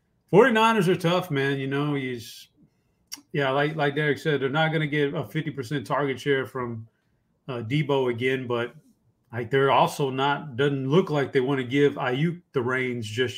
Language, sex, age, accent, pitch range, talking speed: English, male, 30-49, American, 130-150 Hz, 195 wpm